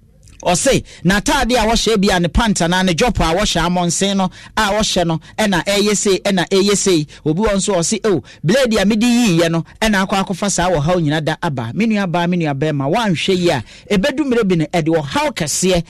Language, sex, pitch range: English, male, 165-225 Hz